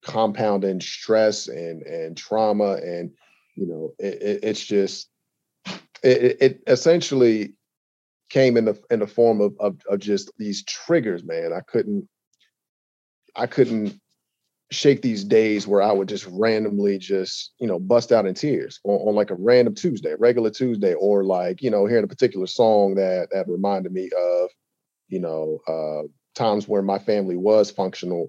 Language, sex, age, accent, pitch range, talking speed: English, male, 40-59, American, 90-110 Hz, 165 wpm